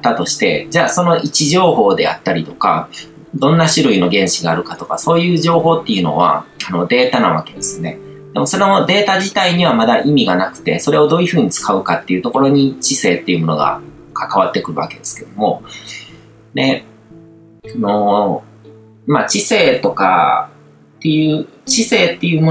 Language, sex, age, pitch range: Japanese, male, 30-49, 110-165 Hz